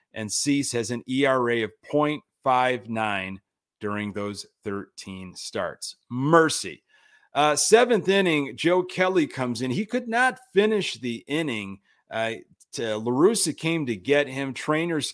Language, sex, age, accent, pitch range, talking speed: English, male, 30-49, American, 120-160 Hz, 130 wpm